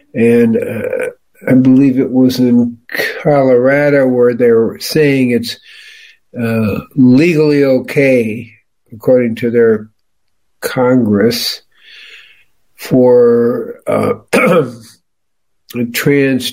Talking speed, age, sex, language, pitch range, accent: 80 wpm, 60-79, male, English, 115-145 Hz, American